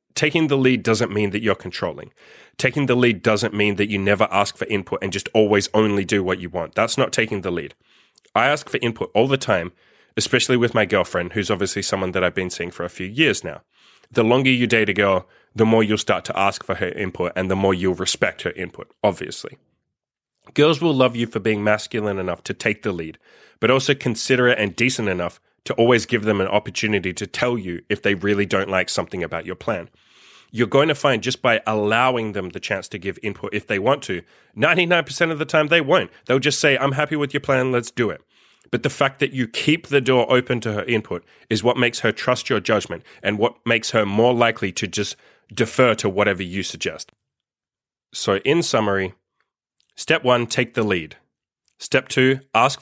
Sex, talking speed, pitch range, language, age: male, 215 wpm, 100-130 Hz, English, 20-39